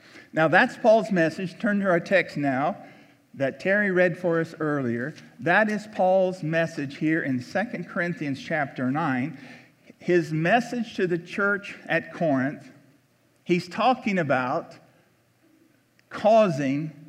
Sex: male